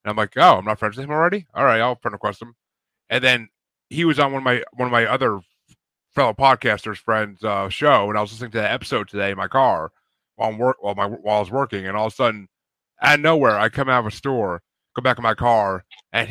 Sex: male